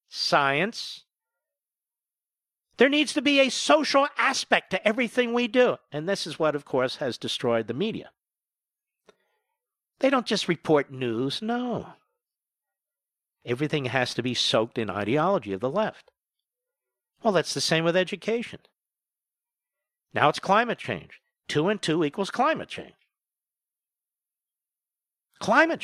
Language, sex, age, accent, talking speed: English, male, 50-69, American, 130 wpm